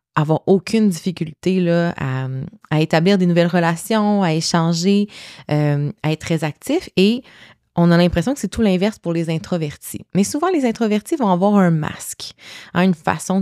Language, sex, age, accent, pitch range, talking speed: French, female, 20-39, Canadian, 160-200 Hz, 170 wpm